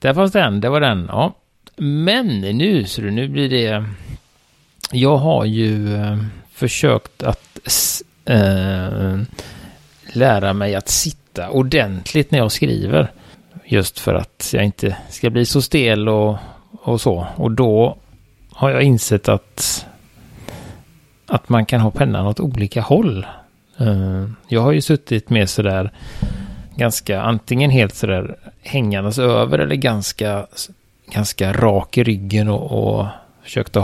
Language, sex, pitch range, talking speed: Swedish, male, 100-130 Hz, 135 wpm